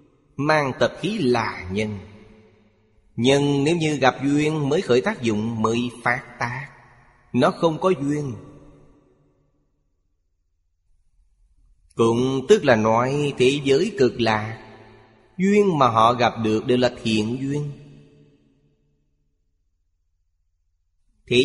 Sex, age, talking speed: male, 20-39, 110 wpm